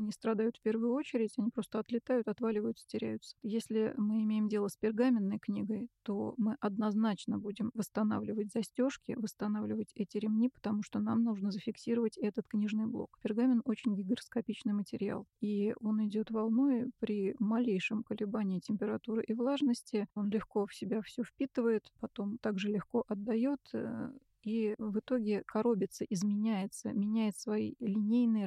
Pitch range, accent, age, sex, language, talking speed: 205-230 Hz, native, 30-49, female, Russian, 140 wpm